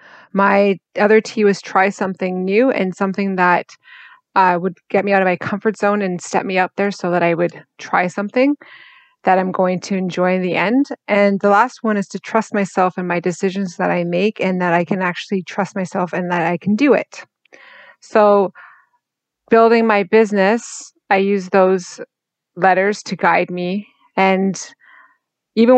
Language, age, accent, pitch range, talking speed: English, 30-49, American, 185-210 Hz, 180 wpm